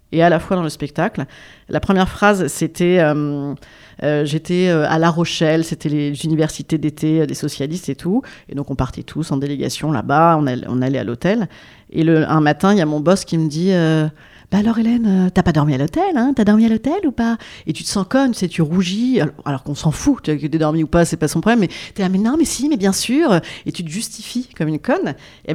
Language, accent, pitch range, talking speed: French, French, 155-220 Hz, 260 wpm